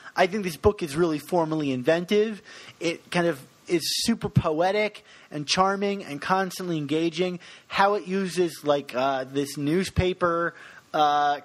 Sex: male